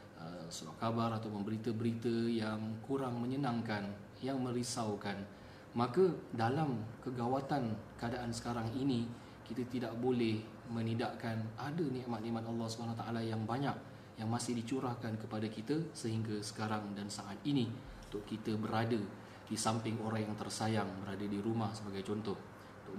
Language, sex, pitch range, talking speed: Malay, male, 105-120 Hz, 125 wpm